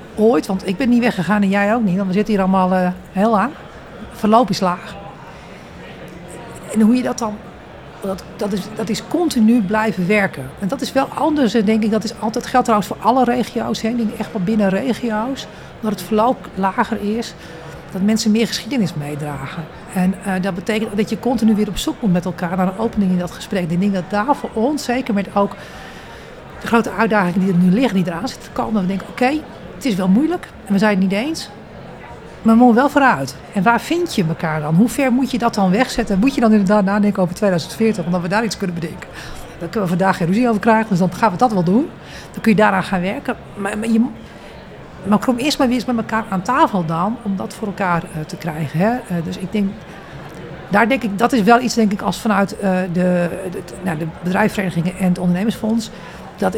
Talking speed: 230 wpm